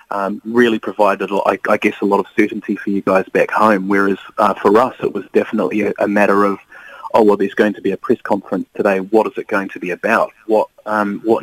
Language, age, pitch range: English, 30-49, 100-110 Hz